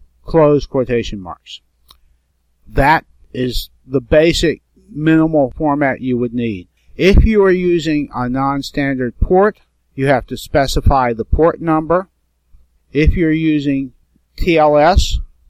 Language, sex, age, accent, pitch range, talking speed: English, male, 50-69, American, 110-150 Hz, 115 wpm